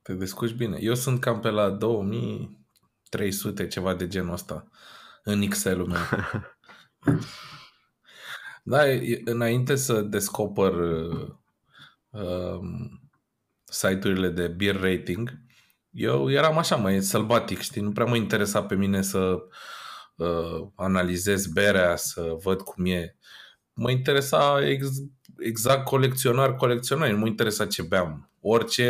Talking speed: 115 wpm